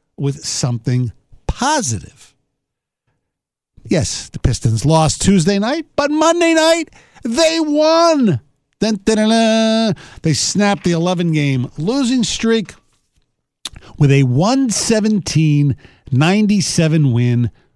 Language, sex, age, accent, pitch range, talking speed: English, male, 50-69, American, 135-200 Hz, 105 wpm